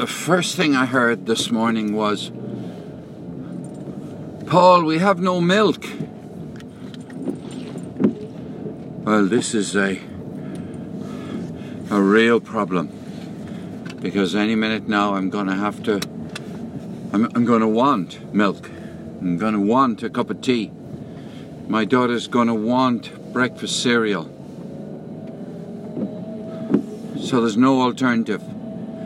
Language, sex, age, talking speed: English, male, 60-79, 105 wpm